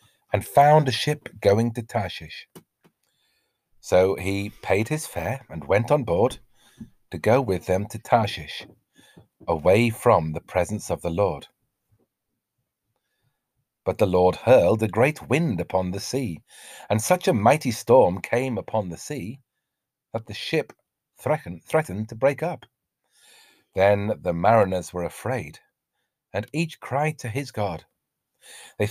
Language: English